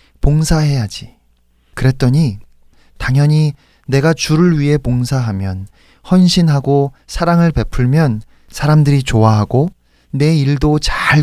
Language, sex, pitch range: Korean, male, 105-165 Hz